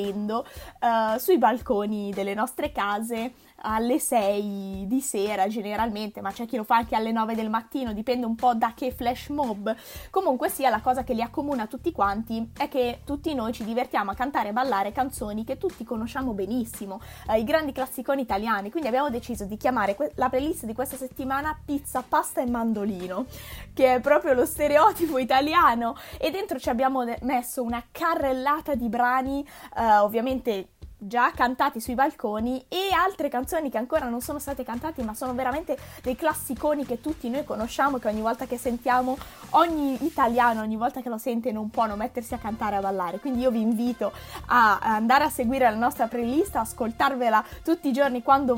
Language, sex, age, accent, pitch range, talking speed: Italian, female, 20-39, native, 225-280 Hz, 185 wpm